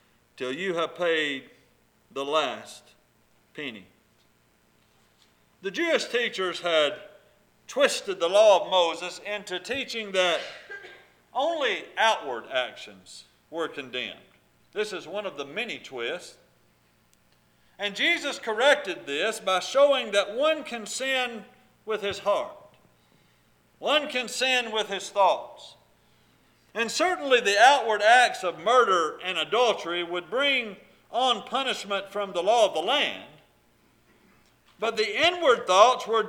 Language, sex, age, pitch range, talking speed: English, male, 50-69, 160-255 Hz, 120 wpm